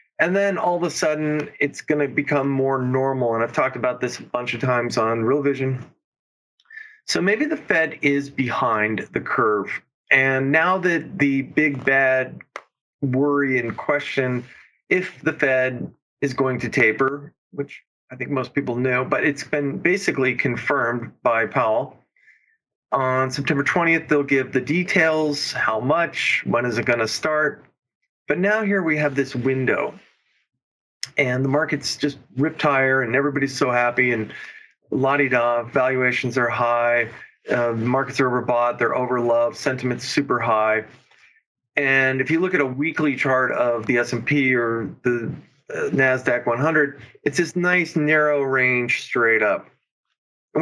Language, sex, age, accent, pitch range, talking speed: English, male, 40-59, American, 125-150 Hz, 155 wpm